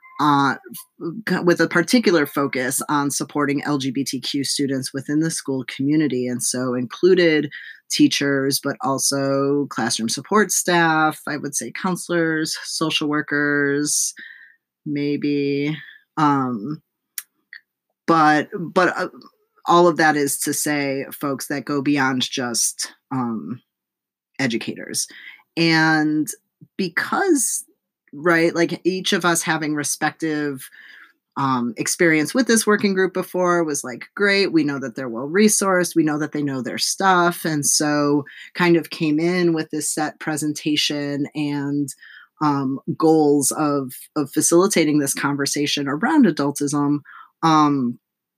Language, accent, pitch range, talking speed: English, American, 140-165 Hz, 125 wpm